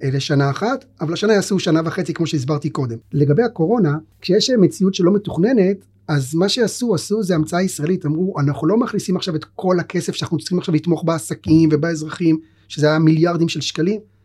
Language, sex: Hebrew, male